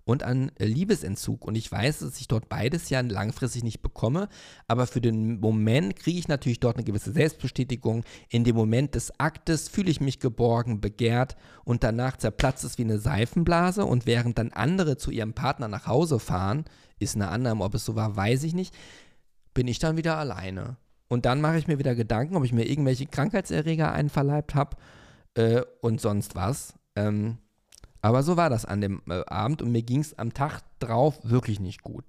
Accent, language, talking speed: German, German, 195 wpm